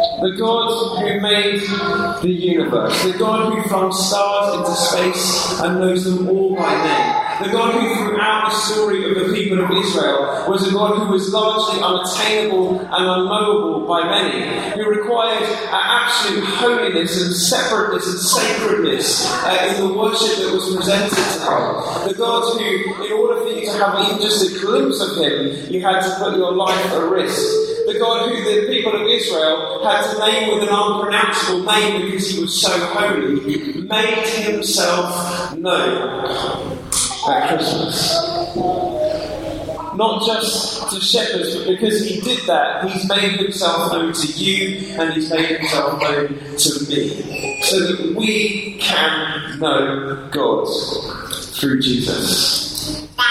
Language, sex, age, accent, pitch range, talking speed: English, male, 40-59, British, 180-225 Hz, 155 wpm